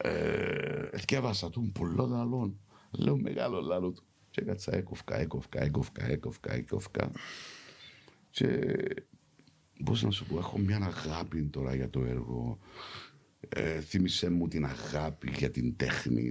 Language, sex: English, male